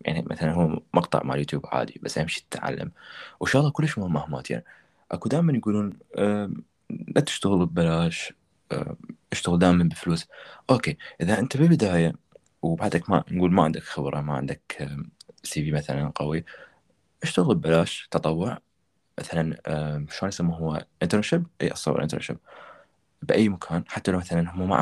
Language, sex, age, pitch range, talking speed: Arabic, male, 20-39, 75-95 Hz, 145 wpm